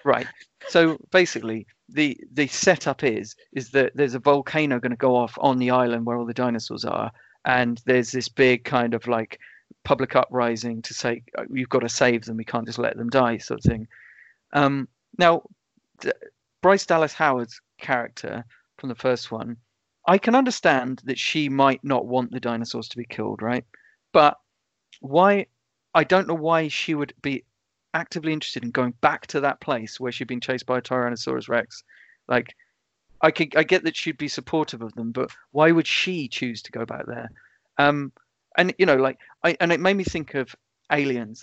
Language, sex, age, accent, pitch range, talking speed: English, male, 40-59, British, 120-150 Hz, 190 wpm